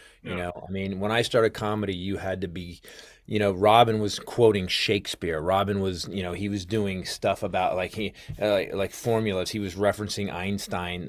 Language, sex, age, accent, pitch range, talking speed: English, male, 30-49, American, 95-115 Hz, 200 wpm